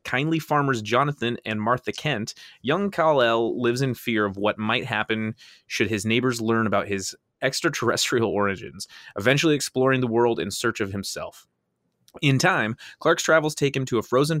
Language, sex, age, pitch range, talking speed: English, male, 20-39, 105-130 Hz, 165 wpm